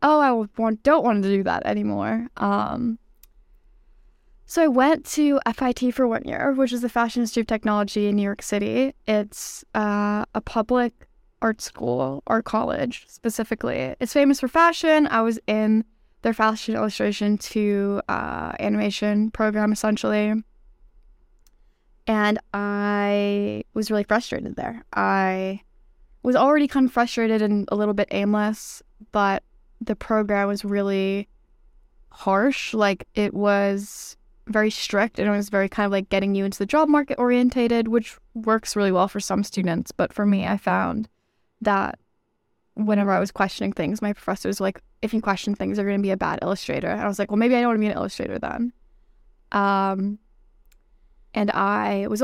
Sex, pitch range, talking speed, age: female, 200-235 Hz, 165 wpm, 10-29